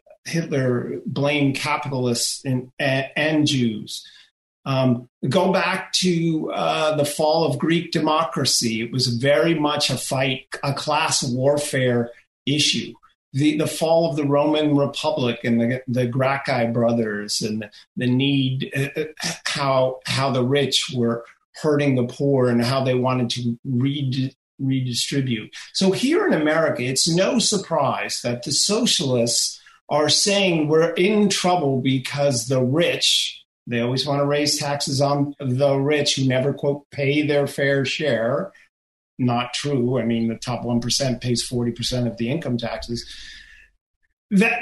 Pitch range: 125-165 Hz